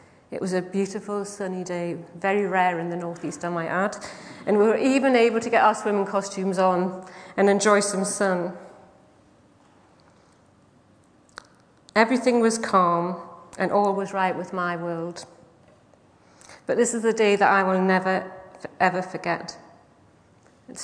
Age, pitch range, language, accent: 40-59, 180-205 Hz, English, British